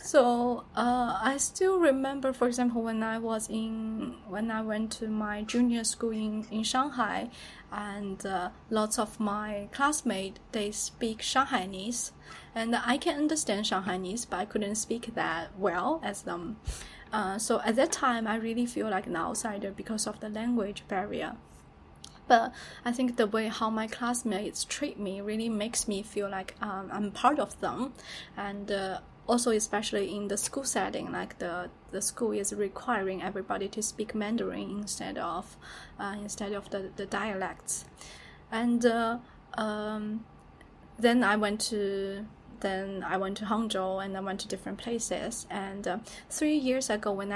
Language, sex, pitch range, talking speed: English, female, 200-235 Hz, 165 wpm